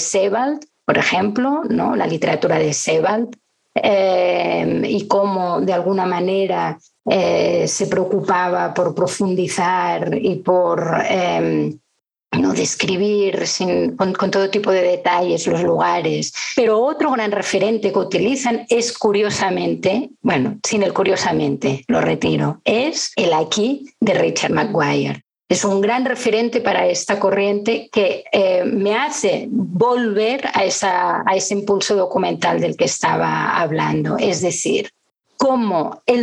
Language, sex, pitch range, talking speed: Spanish, female, 185-245 Hz, 130 wpm